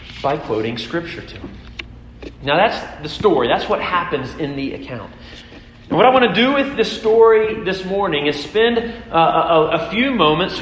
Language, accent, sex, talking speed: English, American, male, 185 wpm